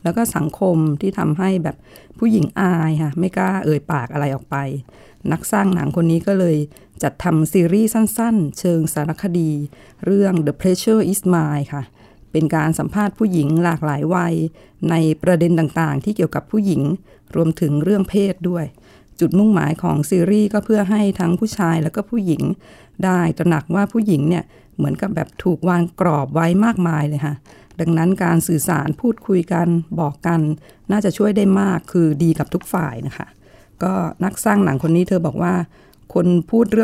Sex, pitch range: female, 155-190 Hz